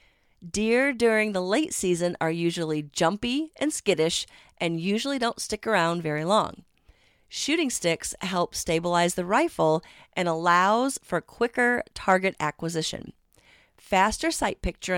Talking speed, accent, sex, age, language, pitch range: 130 wpm, American, female, 40-59, English, 165-225 Hz